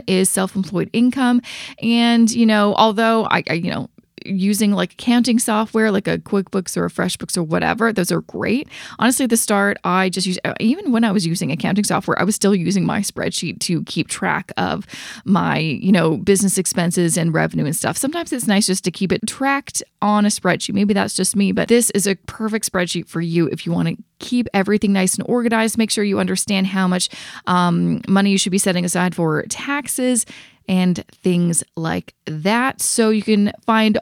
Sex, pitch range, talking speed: female, 185-230 Hz, 200 wpm